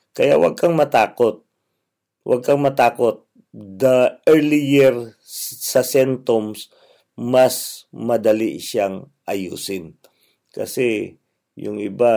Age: 50-69